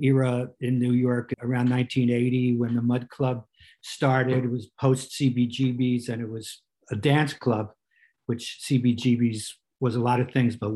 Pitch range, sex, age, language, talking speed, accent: 125-135 Hz, male, 50-69, English, 160 wpm, American